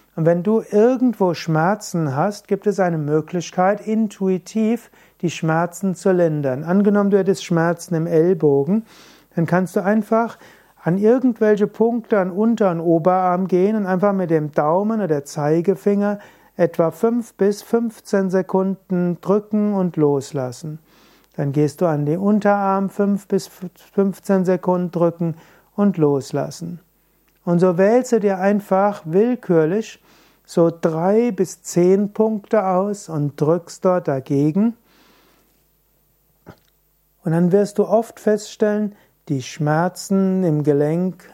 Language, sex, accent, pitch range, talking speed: German, male, German, 165-205 Hz, 130 wpm